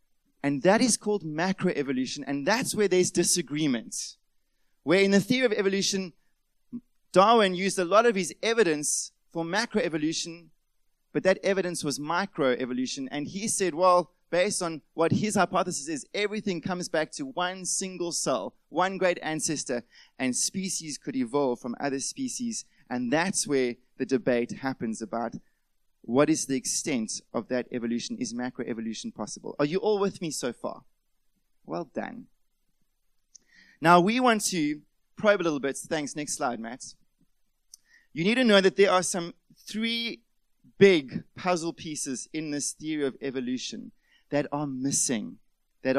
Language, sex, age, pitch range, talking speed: English, male, 20-39, 145-200 Hz, 150 wpm